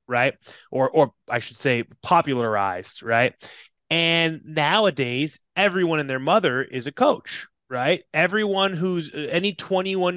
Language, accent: English, American